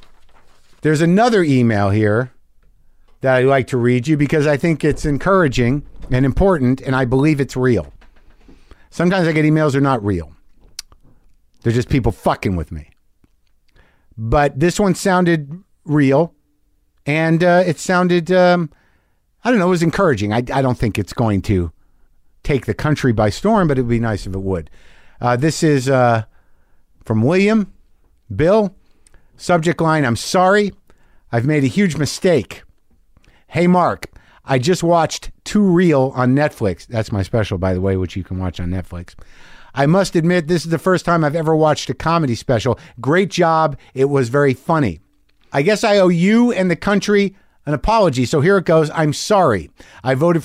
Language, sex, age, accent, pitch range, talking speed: English, male, 50-69, American, 110-170 Hz, 175 wpm